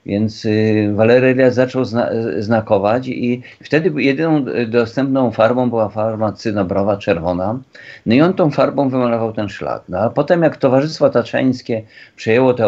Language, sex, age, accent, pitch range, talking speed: Polish, male, 50-69, native, 110-135 Hz, 150 wpm